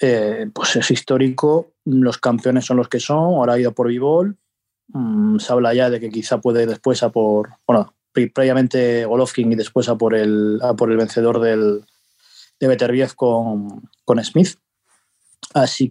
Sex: male